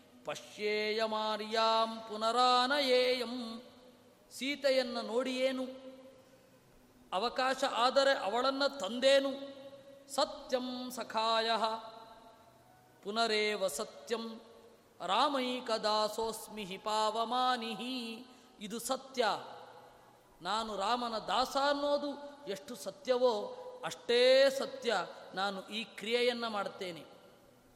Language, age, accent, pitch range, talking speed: Kannada, 20-39, native, 220-265 Hz, 60 wpm